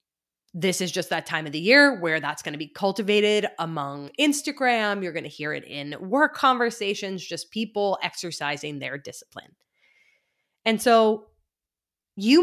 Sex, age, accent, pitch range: female, 20-39, American, 170-230 Hz